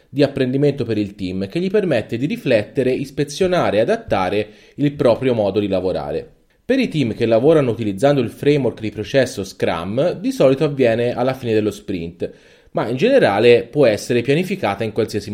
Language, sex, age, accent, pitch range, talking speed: Italian, male, 30-49, native, 110-145 Hz, 170 wpm